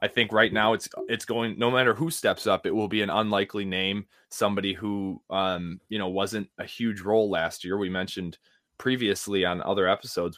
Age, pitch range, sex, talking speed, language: 20-39, 100-125 Hz, male, 200 wpm, English